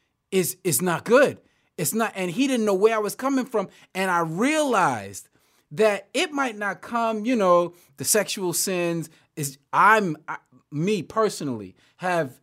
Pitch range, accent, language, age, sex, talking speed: 140-205 Hz, American, English, 30-49, male, 160 wpm